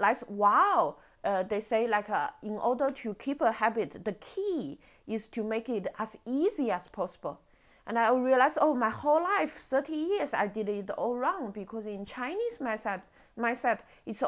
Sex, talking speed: female, 180 wpm